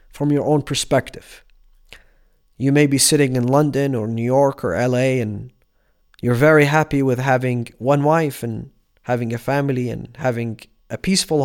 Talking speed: 160 wpm